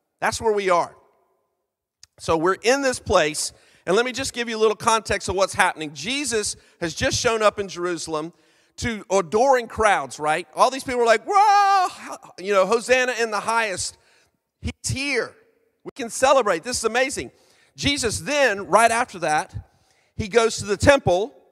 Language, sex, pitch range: English, male, 185-250 Hz